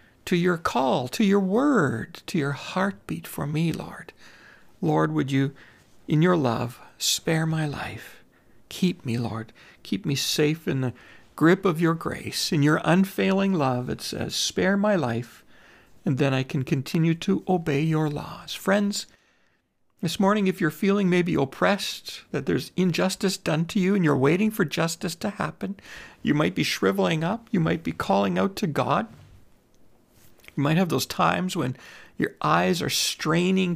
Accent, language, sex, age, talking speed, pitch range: American, English, male, 60-79, 165 wpm, 145-190 Hz